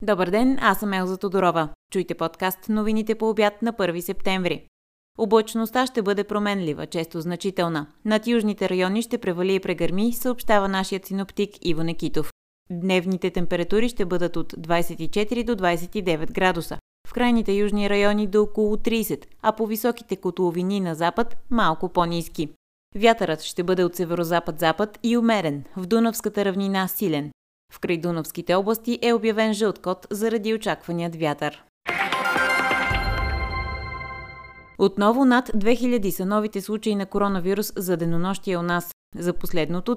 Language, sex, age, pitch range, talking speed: Bulgarian, female, 20-39, 170-215 Hz, 135 wpm